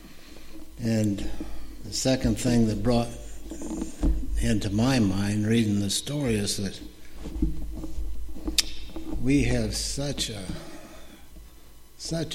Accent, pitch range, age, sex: American, 100-130 Hz, 60-79, male